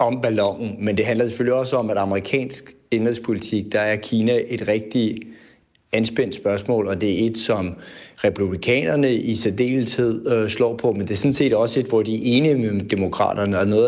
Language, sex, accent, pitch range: Danish, male, native, 100-120 Hz